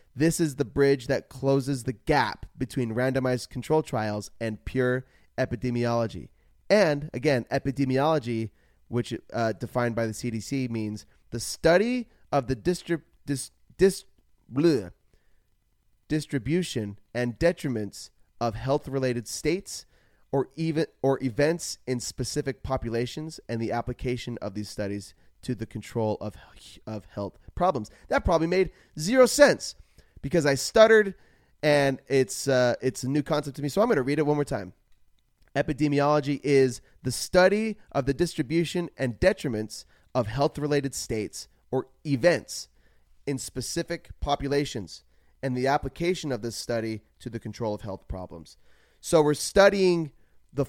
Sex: male